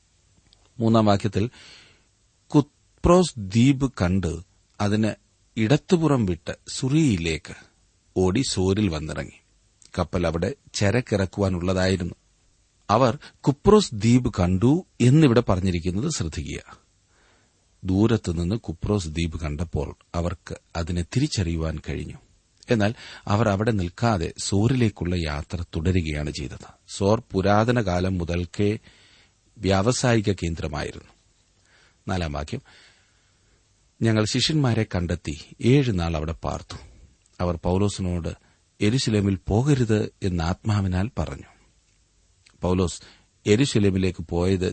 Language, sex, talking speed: Malayalam, male, 80 wpm